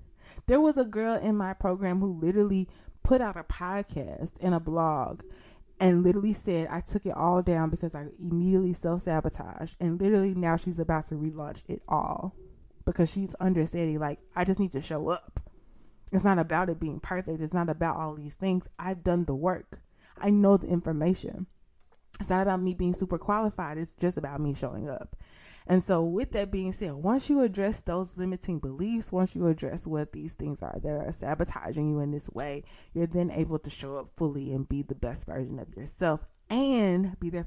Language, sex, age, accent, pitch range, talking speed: English, female, 20-39, American, 155-190 Hz, 195 wpm